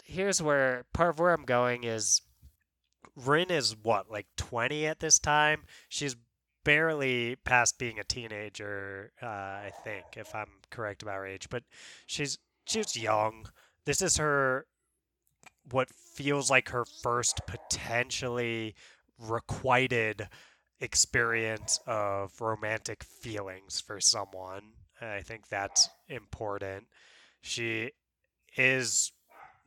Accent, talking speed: American, 115 wpm